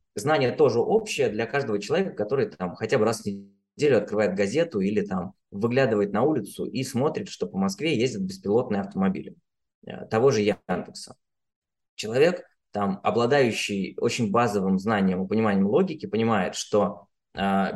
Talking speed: 135 wpm